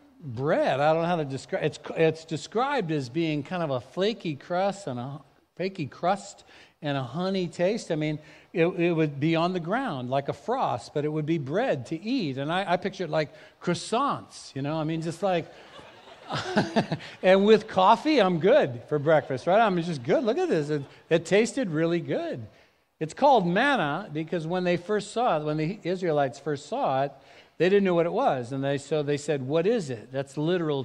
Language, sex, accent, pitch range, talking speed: English, male, American, 150-210 Hz, 210 wpm